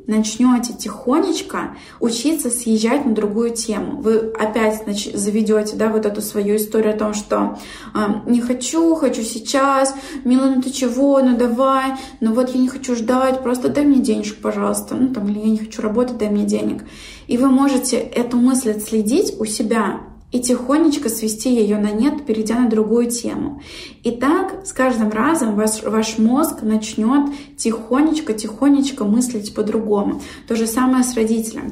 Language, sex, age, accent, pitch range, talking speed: Russian, female, 20-39, native, 215-255 Hz, 160 wpm